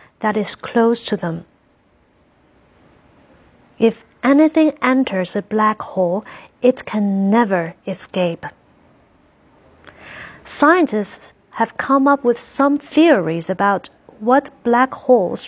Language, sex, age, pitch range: Chinese, female, 30-49, 190-250 Hz